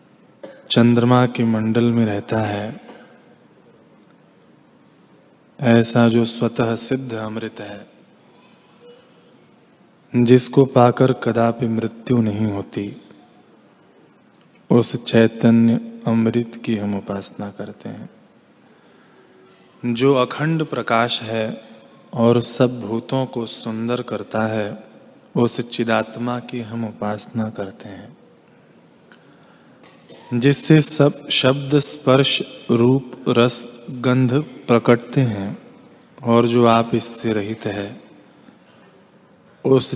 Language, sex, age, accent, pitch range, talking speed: Hindi, male, 20-39, native, 115-125 Hz, 90 wpm